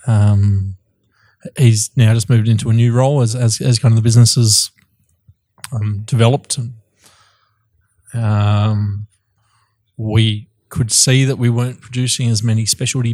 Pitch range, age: 105-120 Hz, 20-39